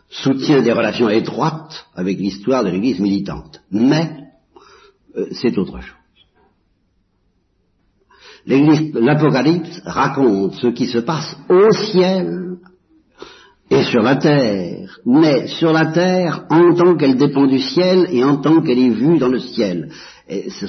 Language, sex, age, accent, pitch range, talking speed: French, male, 50-69, French, 115-180 Hz, 135 wpm